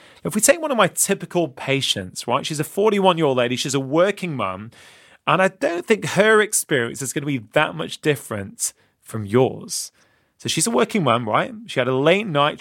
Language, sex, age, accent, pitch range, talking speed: English, male, 30-49, British, 125-175 Hz, 205 wpm